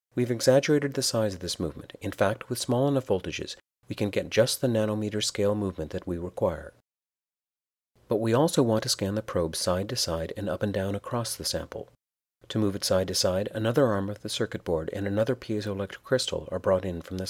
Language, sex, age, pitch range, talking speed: English, male, 40-59, 95-125 Hz, 220 wpm